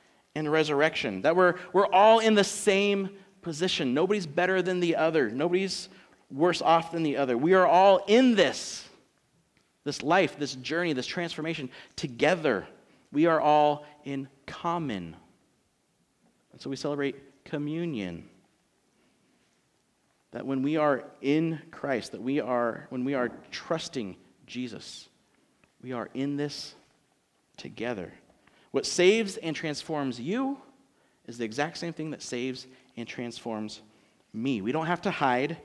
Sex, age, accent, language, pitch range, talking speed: male, 40-59, American, English, 135-180 Hz, 140 wpm